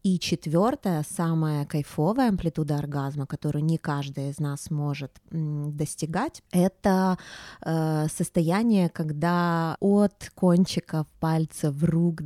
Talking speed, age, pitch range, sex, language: 105 wpm, 20-39, 155-195 Hz, female, Russian